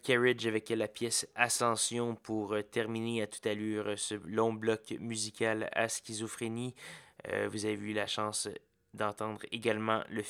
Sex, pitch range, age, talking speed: male, 105-115 Hz, 20-39, 145 wpm